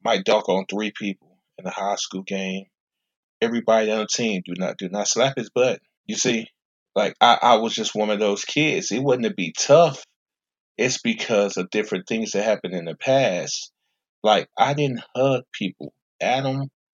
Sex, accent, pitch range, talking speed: male, American, 105-130 Hz, 190 wpm